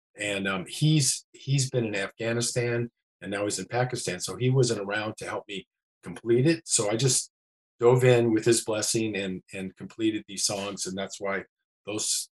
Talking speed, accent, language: 185 wpm, American, English